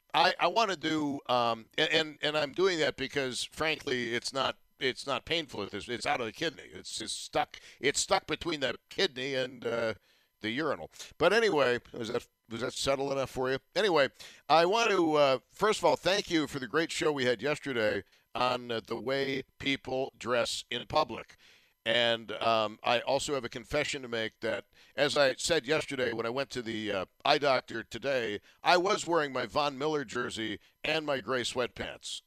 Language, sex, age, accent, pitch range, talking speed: English, male, 60-79, American, 120-155 Hz, 195 wpm